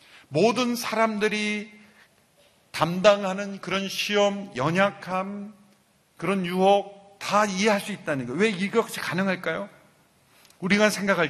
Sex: male